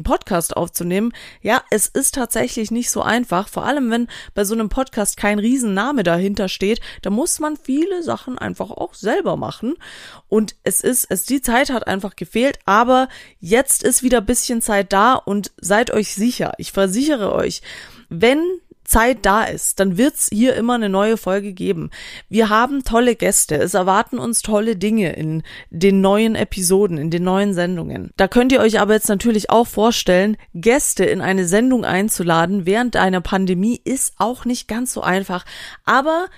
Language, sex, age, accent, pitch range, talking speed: German, female, 20-39, German, 195-245 Hz, 175 wpm